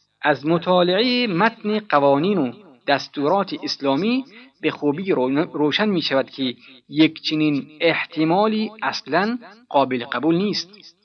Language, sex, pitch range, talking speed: Persian, male, 130-170 Hz, 110 wpm